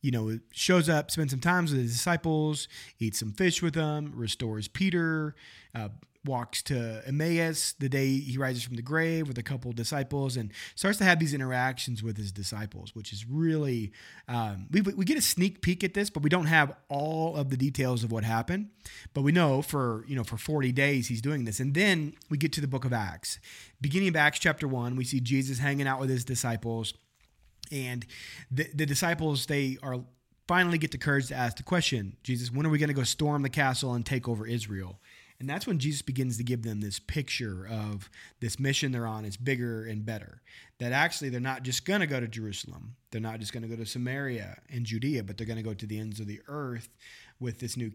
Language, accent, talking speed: English, American, 225 wpm